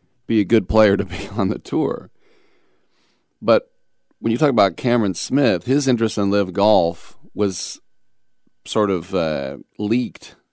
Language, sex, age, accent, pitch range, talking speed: English, male, 40-59, American, 80-100 Hz, 150 wpm